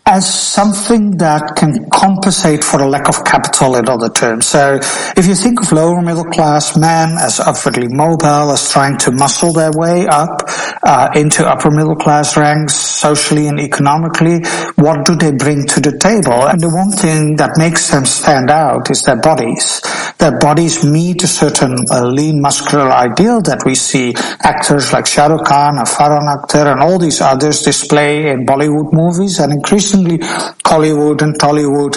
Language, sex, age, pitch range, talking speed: English, male, 60-79, 145-175 Hz, 175 wpm